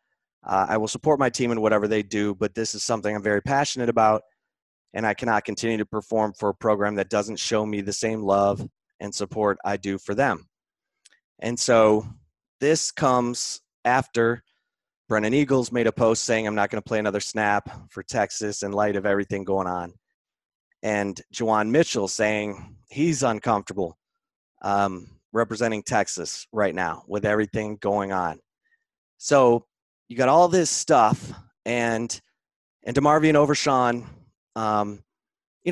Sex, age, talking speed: male, 30-49, 155 wpm